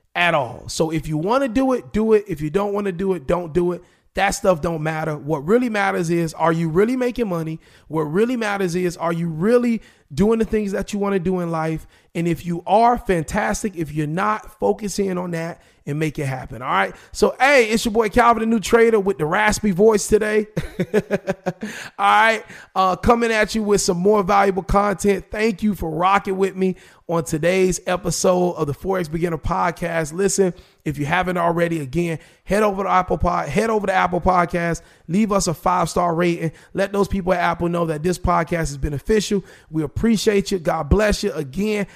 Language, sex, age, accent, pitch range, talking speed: English, male, 30-49, American, 170-205 Hz, 210 wpm